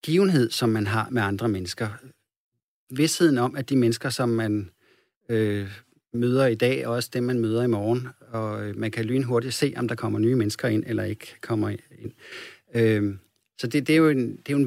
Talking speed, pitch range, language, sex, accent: 205 wpm, 110-125 Hz, Danish, male, native